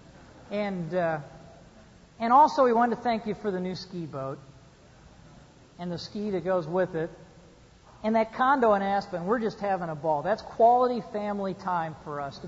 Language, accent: English, American